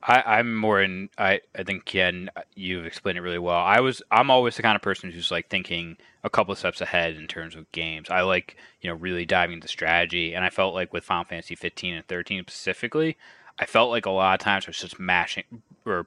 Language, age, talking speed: English, 20-39, 240 wpm